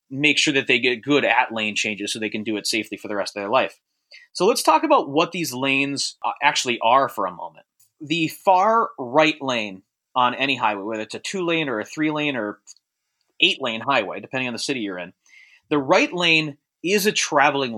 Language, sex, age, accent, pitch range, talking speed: English, male, 30-49, American, 125-160 Hz, 220 wpm